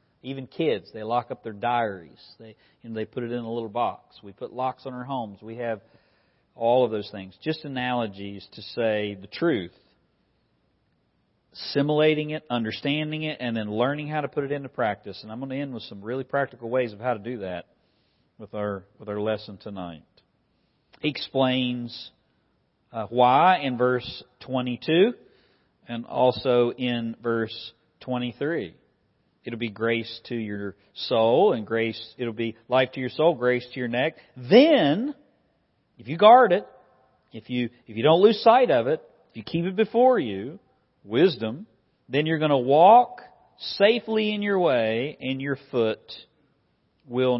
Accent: American